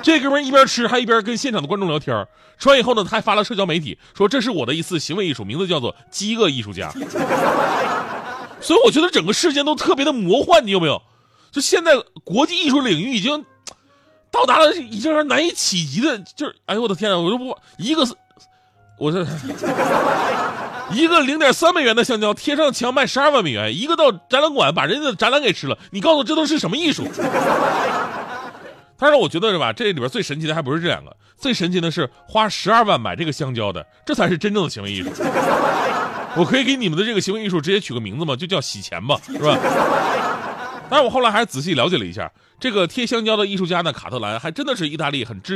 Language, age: Chinese, 30-49